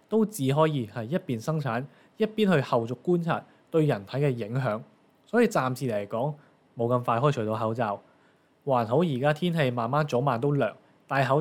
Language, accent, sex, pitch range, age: Chinese, native, male, 120-170 Hz, 20-39